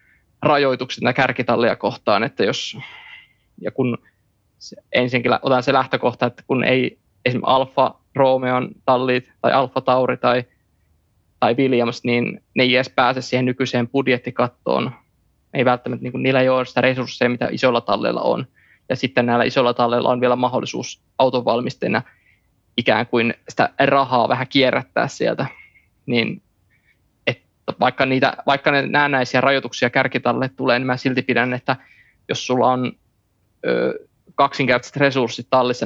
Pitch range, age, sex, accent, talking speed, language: 120-130 Hz, 20-39, male, native, 130 wpm, Finnish